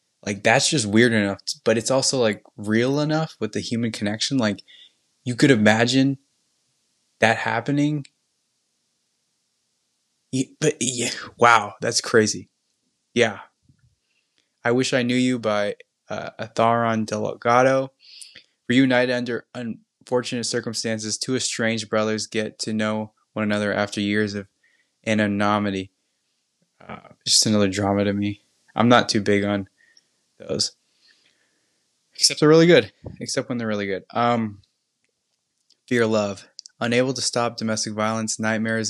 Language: English